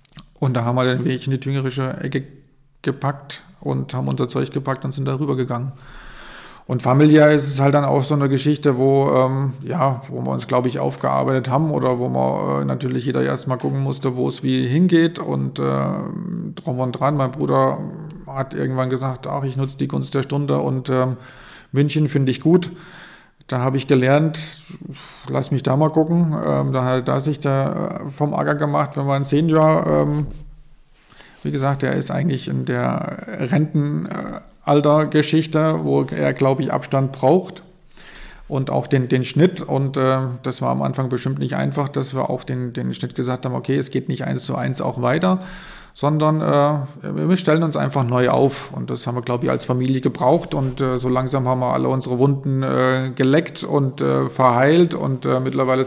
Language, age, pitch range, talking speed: German, 40-59, 130-150 Hz, 190 wpm